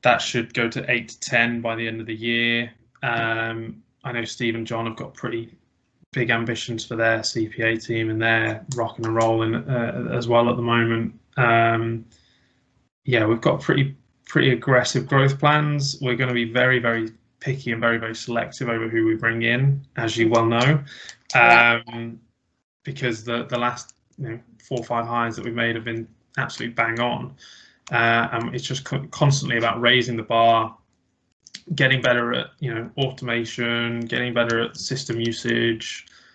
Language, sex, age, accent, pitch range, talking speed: English, male, 20-39, British, 115-125 Hz, 175 wpm